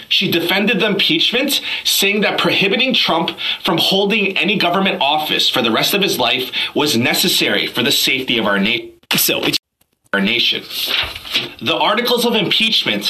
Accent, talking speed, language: American, 150 wpm, English